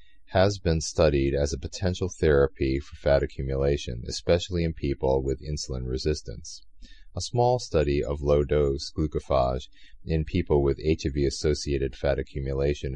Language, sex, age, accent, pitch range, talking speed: English, male, 40-59, American, 70-85 Hz, 130 wpm